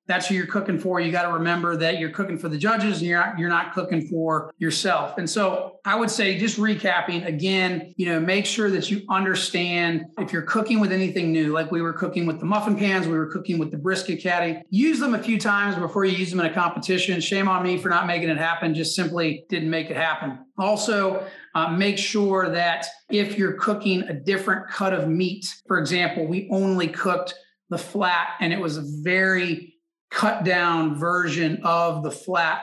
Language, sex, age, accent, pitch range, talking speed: English, male, 30-49, American, 165-190 Hz, 210 wpm